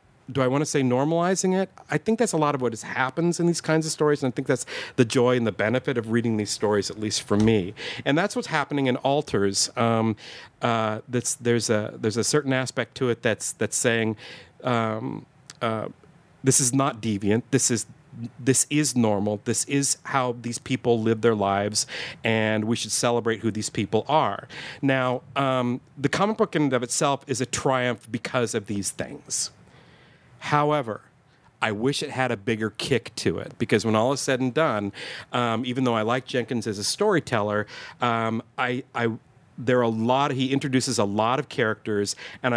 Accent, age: American, 40-59